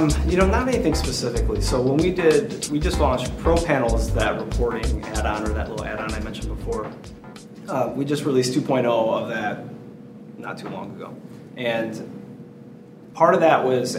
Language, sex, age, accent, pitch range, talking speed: English, male, 30-49, American, 120-140 Hz, 165 wpm